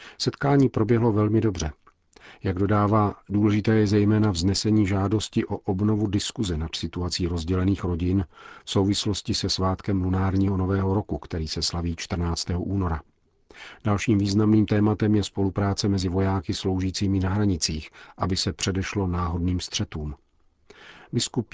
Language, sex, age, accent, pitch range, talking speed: Czech, male, 40-59, native, 90-105 Hz, 130 wpm